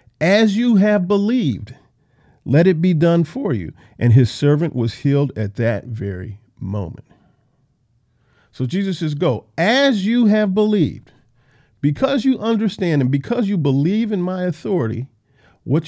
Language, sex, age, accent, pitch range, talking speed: English, male, 50-69, American, 120-150 Hz, 145 wpm